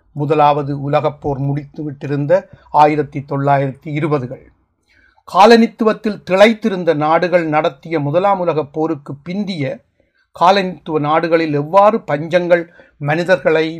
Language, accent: Tamil, native